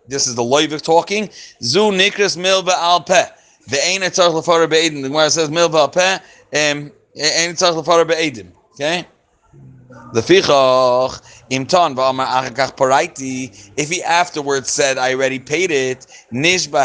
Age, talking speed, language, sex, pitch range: 30-49, 140 wpm, English, male, 130-165 Hz